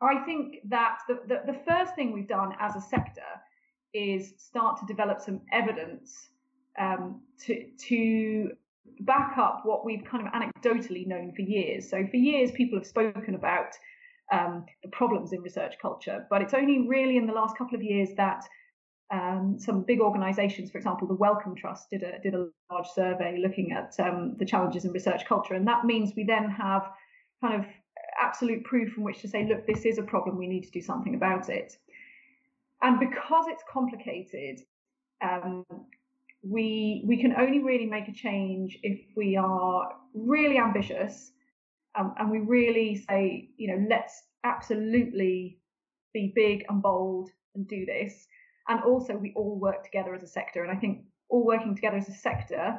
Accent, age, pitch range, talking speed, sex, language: British, 30-49, 195-250 Hz, 175 wpm, female, English